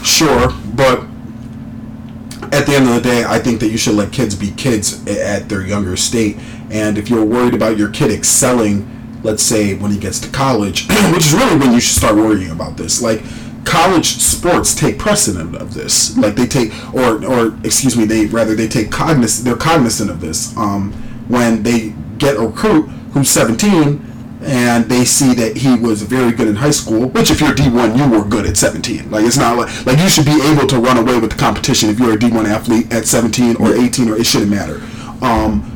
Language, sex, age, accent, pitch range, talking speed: English, male, 30-49, American, 110-130 Hz, 210 wpm